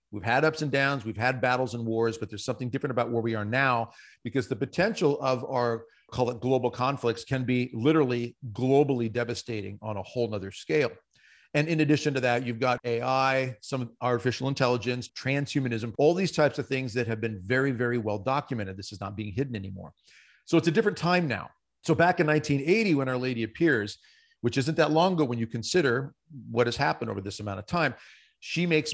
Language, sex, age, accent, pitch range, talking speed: English, male, 40-59, American, 115-145 Hz, 205 wpm